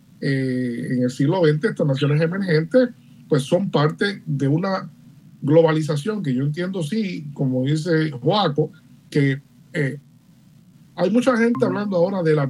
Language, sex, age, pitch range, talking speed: Spanish, male, 50-69, 140-170 Hz, 145 wpm